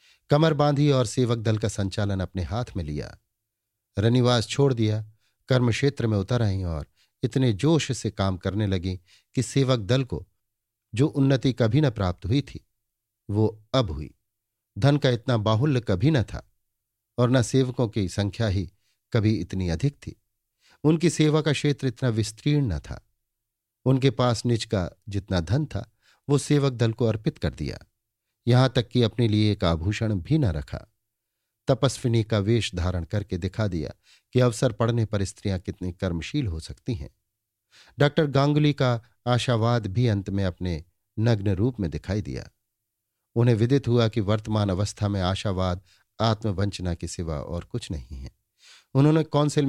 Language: Hindi